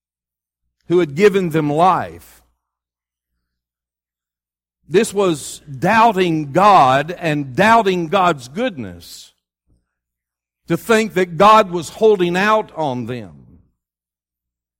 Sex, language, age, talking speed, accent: male, English, 50-69, 90 wpm, American